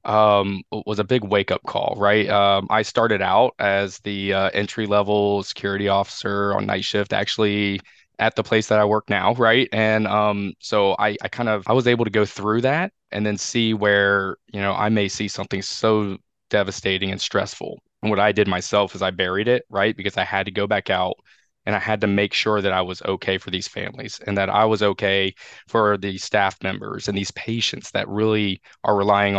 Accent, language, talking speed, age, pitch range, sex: American, English, 215 wpm, 20-39, 100-110 Hz, male